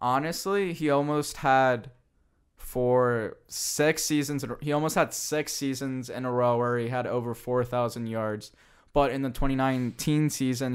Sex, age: male, 10-29